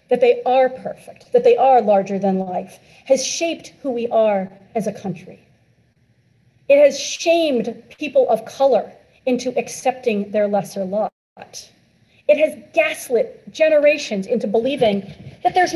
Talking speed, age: 140 wpm, 40-59